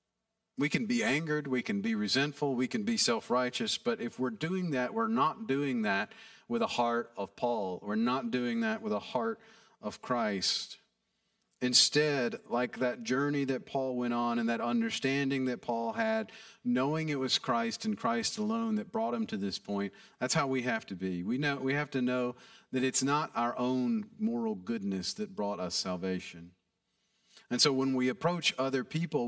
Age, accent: 40-59, American